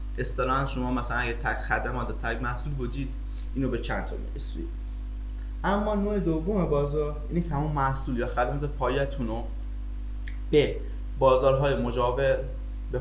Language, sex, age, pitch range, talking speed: Persian, male, 20-39, 115-135 Hz, 140 wpm